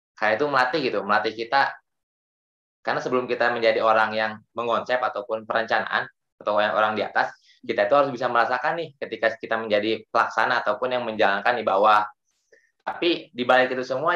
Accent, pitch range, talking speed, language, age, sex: native, 105-130 Hz, 160 wpm, Indonesian, 20-39, male